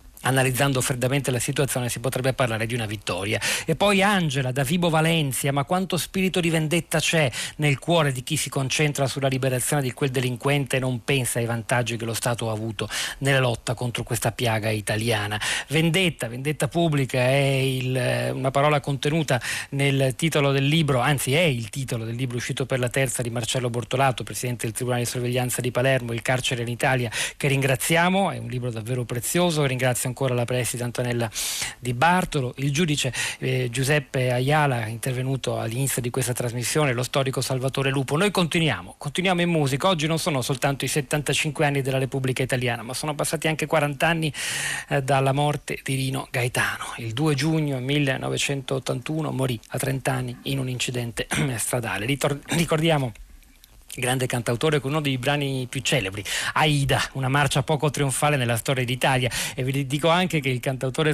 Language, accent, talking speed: Italian, native, 175 wpm